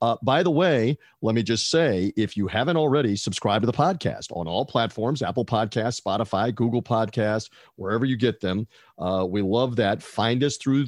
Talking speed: 195 wpm